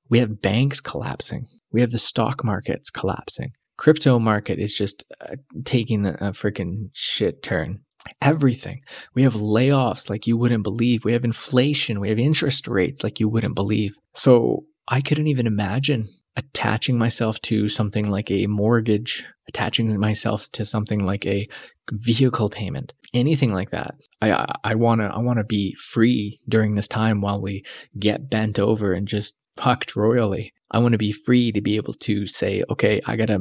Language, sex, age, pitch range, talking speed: English, male, 20-39, 105-125 Hz, 175 wpm